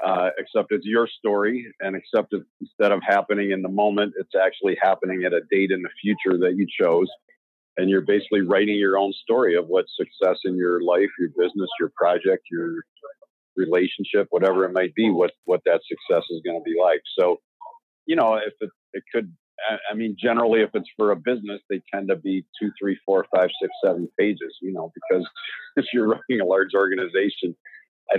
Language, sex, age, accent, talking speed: English, male, 50-69, American, 200 wpm